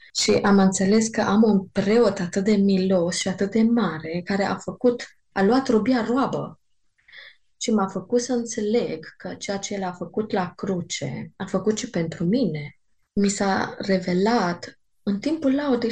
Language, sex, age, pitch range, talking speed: Romanian, female, 20-39, 185-220 Hz, 170 wpm